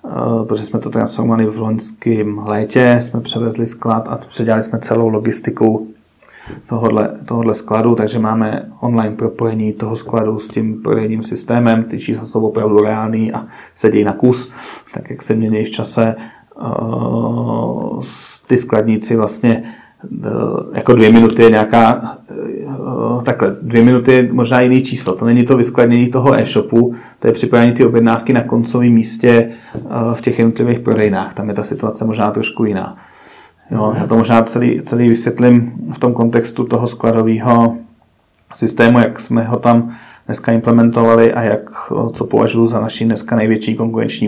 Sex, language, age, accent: male, Czech, 30-49, native